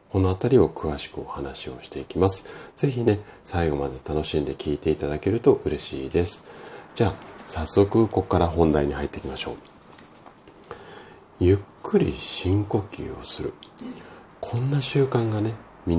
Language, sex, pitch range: Japanese, male, 75-110 Hz